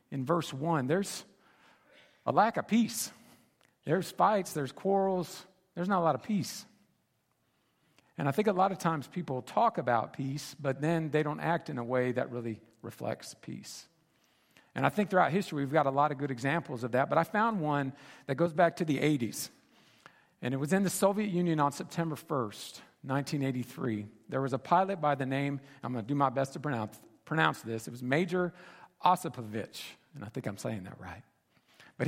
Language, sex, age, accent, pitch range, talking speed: English, male, 50-69, American, 130-180 Hz, 195 wpm